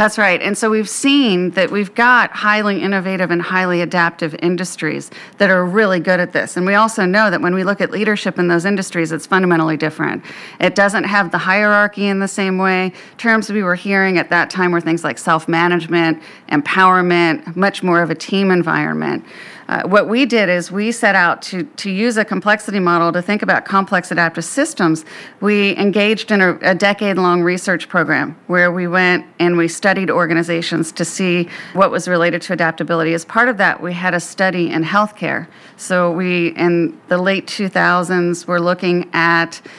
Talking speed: 190 wpm